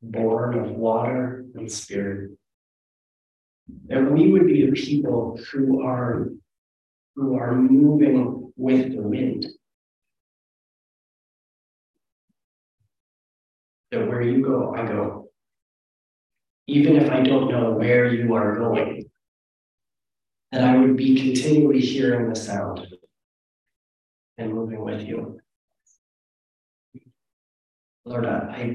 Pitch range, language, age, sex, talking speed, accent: 100-130 Hz, English, 40-59, male, 100 wpm, American